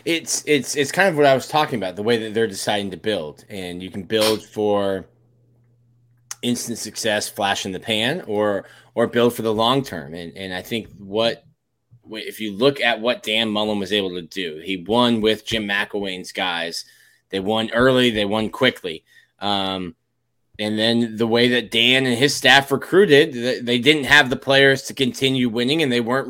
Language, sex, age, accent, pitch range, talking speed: English, male, 20-39, American, 105-125 Hz, 195 wpm